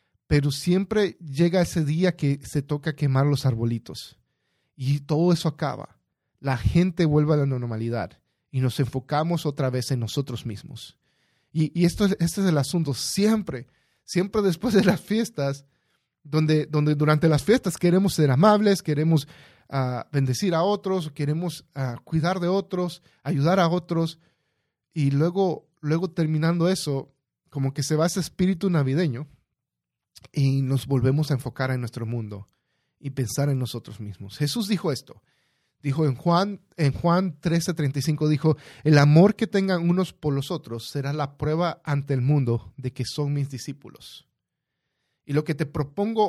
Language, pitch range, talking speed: Spanish, 135-170 Hz, 160 wpm